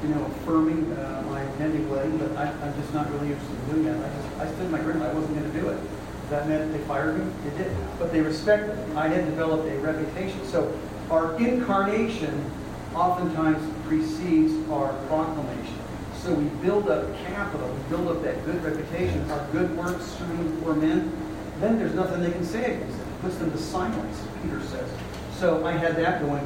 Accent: American